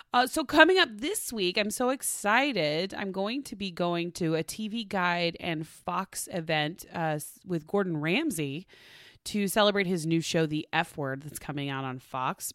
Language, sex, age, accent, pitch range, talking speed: English, female, 30-49, American, 150-205 Hz, 180 wpm